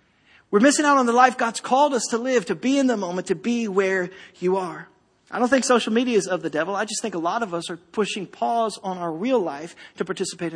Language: English